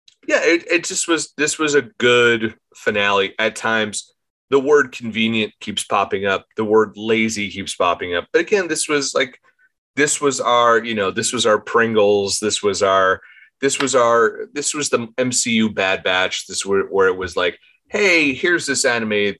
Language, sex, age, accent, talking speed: English, male, 30-49, American, 185 wpm